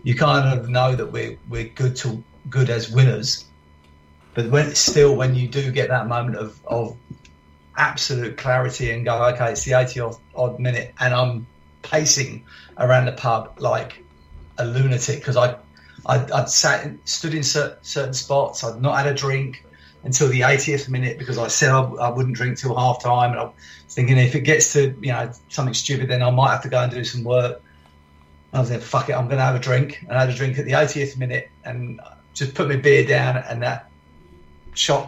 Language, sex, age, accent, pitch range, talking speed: English, male, 30-49, British, 110-135 Hz, 205 wpm